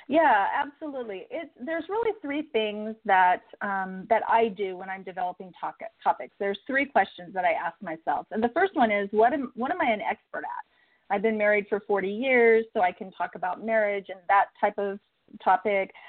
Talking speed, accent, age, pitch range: 200 wpm, American, 40-59, 195-245 Hz